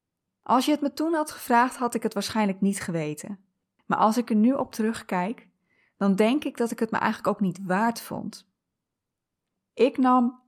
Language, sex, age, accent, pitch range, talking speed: Dutch, female, 20-39, Dutch, 200-245 Hz, 195 wpm